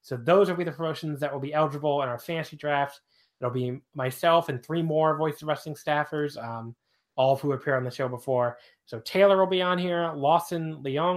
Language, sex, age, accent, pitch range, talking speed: English, male, 20-39, American, 125-150 Hz, 220 wpm